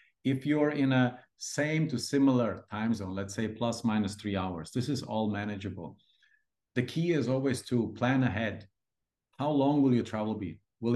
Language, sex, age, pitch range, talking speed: English, male, 50-69, 105-130 Hz, 180 wpm